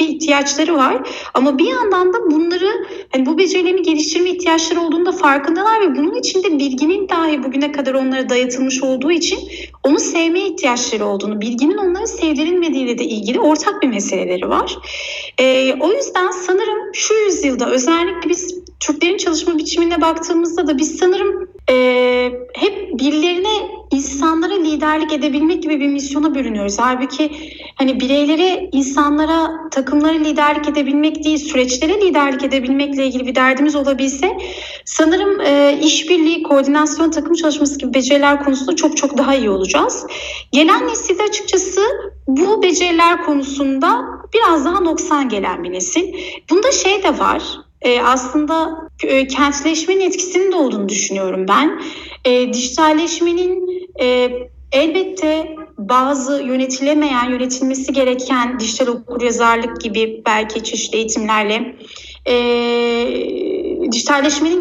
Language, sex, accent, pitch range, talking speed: Turkish, female, native, 265-350 Hz, 120 wpm